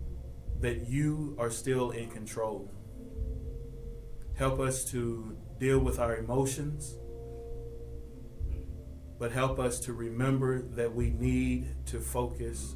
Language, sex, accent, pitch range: English, male, American, 100-125 Hz